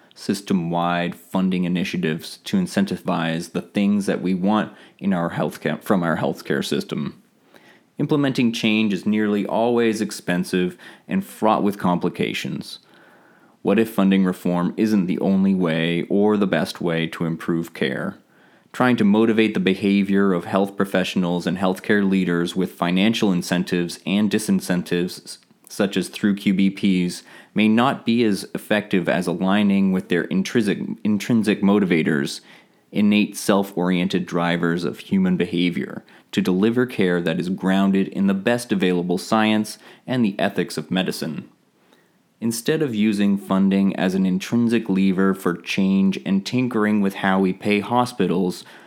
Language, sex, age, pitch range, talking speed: English, male, 30-49, 90-110 Hz, 140 wpm